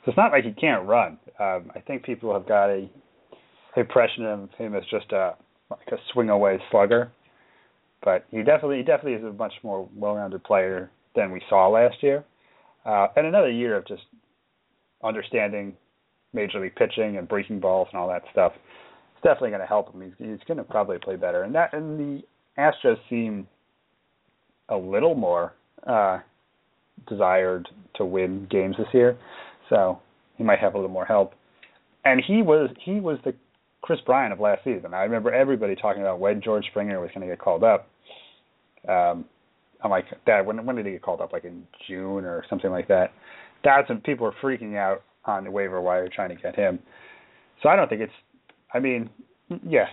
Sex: male